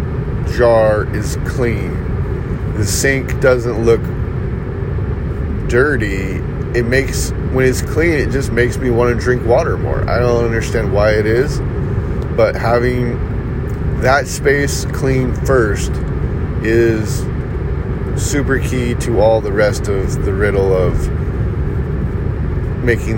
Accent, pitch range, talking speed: American, 100-120 Hz, 120 wpm